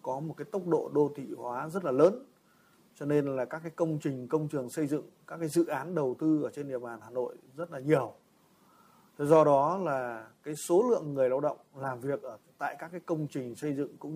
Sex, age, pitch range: male, 20-39, 140-170 Hz